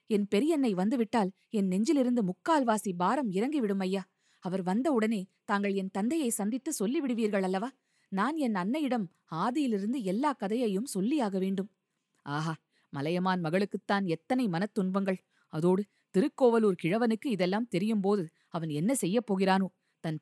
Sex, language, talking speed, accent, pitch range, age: female, Tamil, 120 wpm, native, 190-245 Hz, 20-39